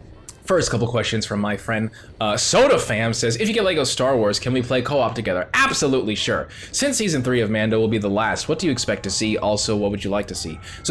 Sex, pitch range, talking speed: male, 100-130 Hz, 250 wpm